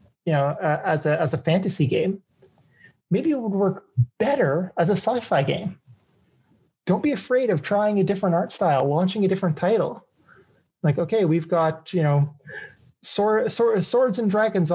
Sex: male